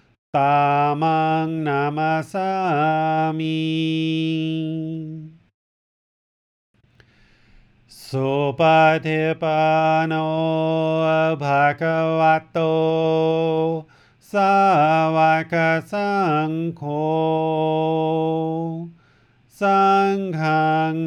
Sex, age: male, 40-59